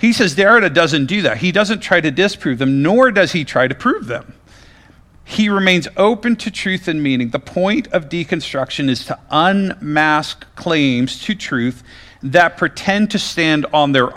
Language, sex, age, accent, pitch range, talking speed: English, male, 40-59, American, 135-175 Hz, 180 wpm